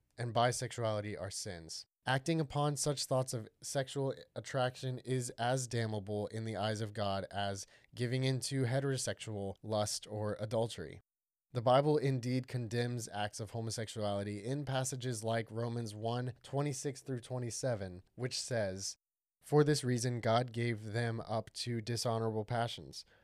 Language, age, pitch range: English, 20-39, 105-130 Hz